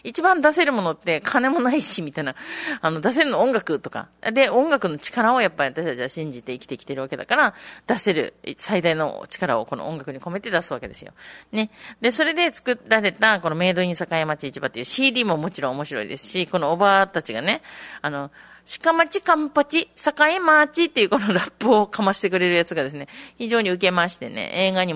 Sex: female